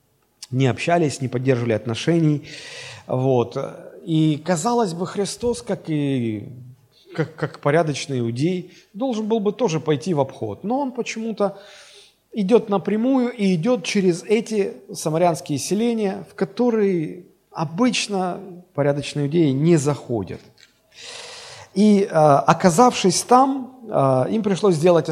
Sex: male